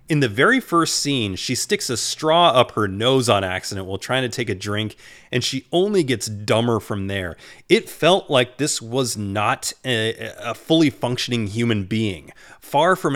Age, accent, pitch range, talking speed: 30-49, American, 110-140 Hz, 185 wpm